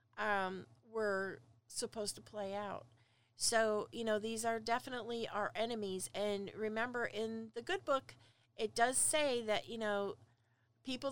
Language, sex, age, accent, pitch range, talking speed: English, female, 40-59, American, 180-235 Hz, 145 wpm